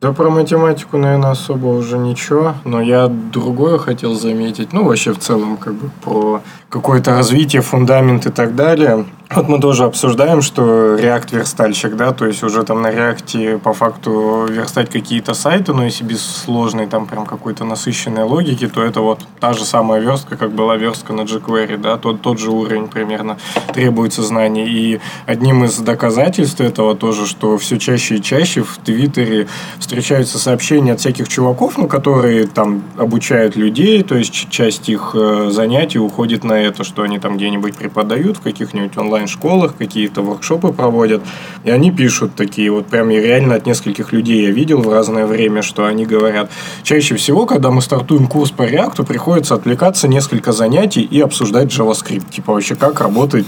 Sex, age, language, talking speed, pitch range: male, 20-39, Russian, 170 wpm, 110-135 Hz